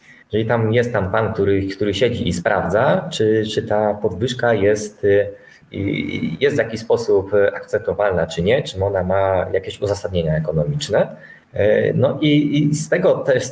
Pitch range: 105-155 Hz